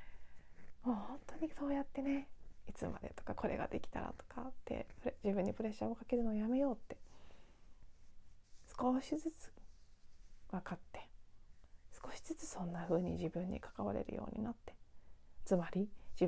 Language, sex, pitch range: Japanese, female, 170-240 Hz